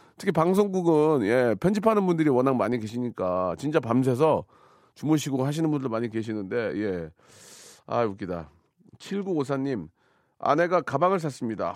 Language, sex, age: Korean, male, 40-59